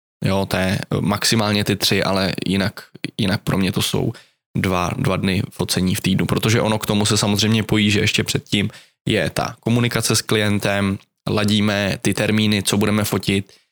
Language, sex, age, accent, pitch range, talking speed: Czech, male, 20-39, native, 100-115 Hz, 175 wpm